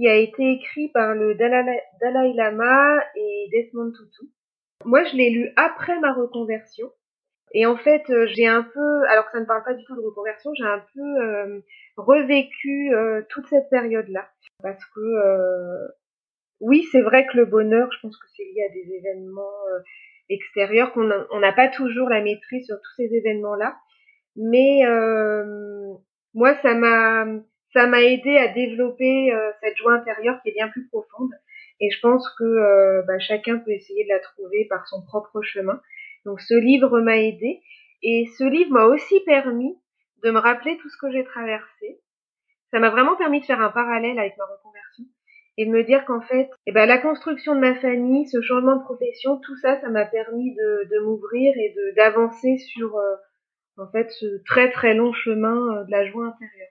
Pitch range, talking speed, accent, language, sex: 215-270 Hz, 185 wpm, French, French, female